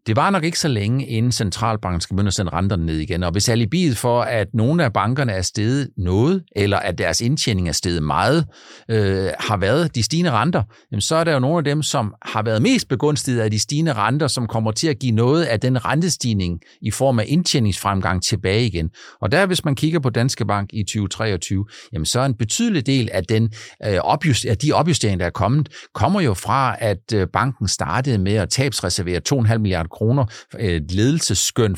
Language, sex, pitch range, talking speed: Danish, male, 100-135 Hz, 205 wpm